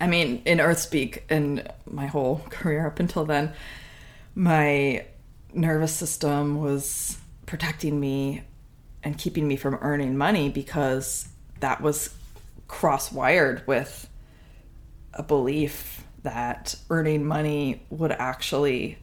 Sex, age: female, 20-39